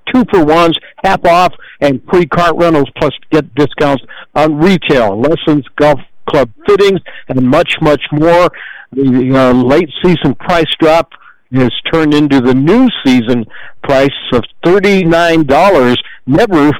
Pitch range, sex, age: 135-175 Hz, male, 60-79